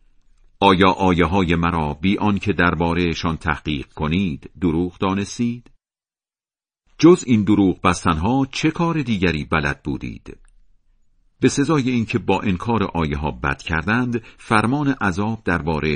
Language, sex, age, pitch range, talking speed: Persian, male, 50-69, 85-115 Hz, 130 wpm